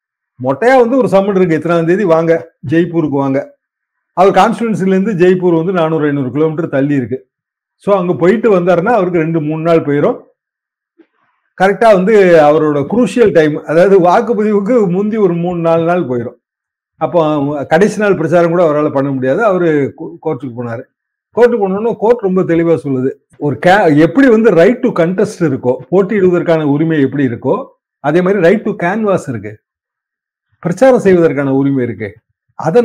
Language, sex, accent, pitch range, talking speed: Tamil, male, native, 150-200 Hz, 150 wpm